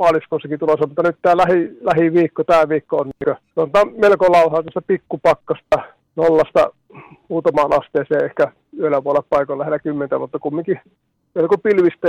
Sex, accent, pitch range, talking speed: male, native, 140-175 Hz, 145 wpm